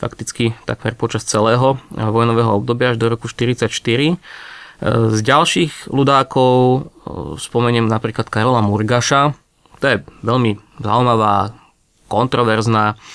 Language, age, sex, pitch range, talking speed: Slovak, 20-39, male, 110-130 Hz, 100 wpm